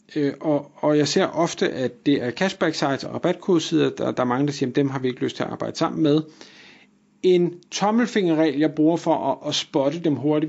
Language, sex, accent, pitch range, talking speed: Danish, male, native, 135-175 Hz, 225 wpm